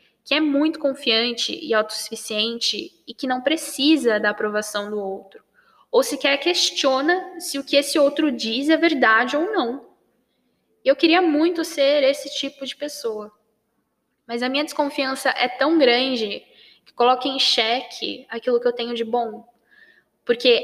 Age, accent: 10-29, Brazilian